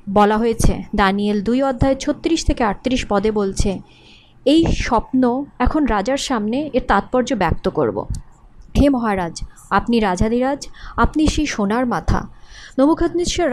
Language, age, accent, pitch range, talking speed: Bengali, 30-49, native, 205-270 Hz, 130 wpm